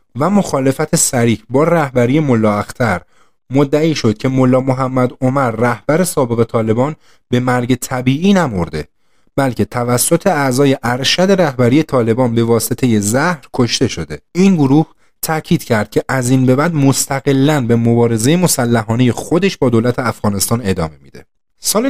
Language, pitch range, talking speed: Persian, 110-145 Hz, 140 wpm